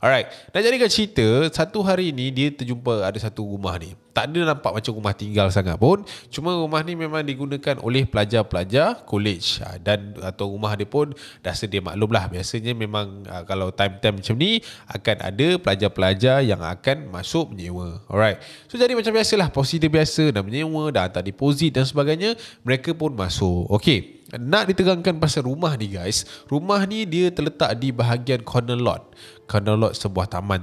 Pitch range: 105-155 Hz